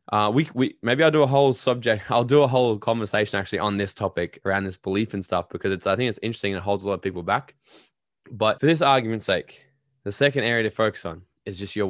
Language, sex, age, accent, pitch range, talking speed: English, male, 20-39, Australian, 105-130 Hz, 255 wpm